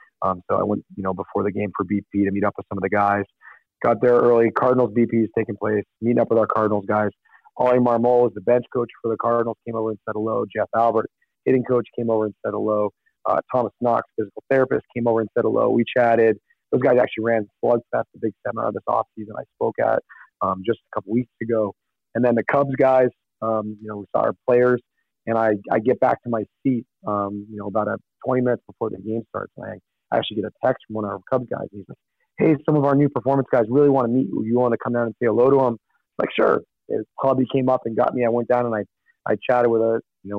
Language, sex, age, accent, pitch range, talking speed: English, male, 40-59, American, 105-125 Hz, 260 wpm